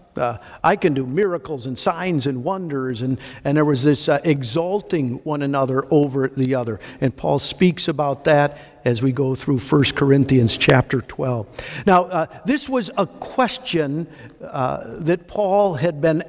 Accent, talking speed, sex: American, 165 wpm, male